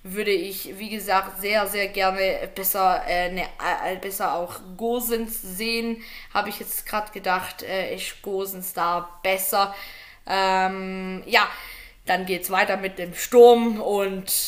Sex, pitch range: female, 195-285 Hz